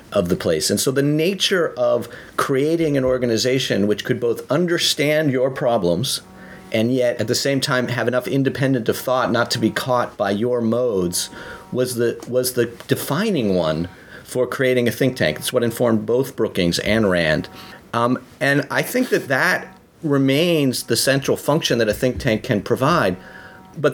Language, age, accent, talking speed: English, 40-59, American, 175 wpm